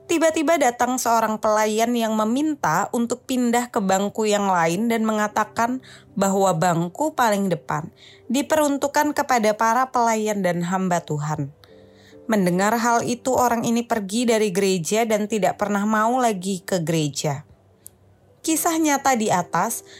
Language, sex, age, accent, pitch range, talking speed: Indonesian, female, 20-39, native, 190-265 Hz, 130 wpm